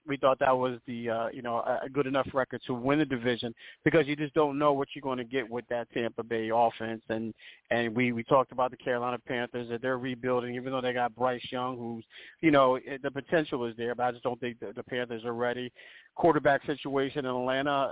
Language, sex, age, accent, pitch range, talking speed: English, male, 40-59, American, 125-140 Hz, 235 wpm